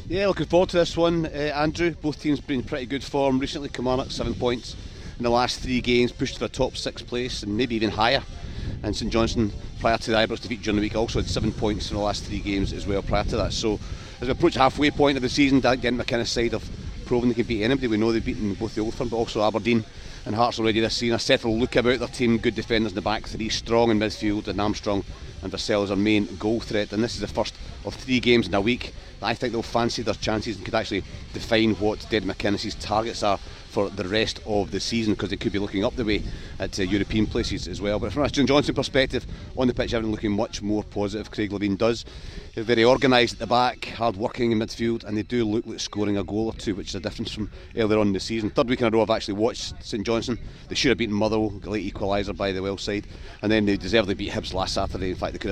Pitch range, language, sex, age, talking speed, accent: 100-120 Hz, English, male, 40-59, 265 wpm, British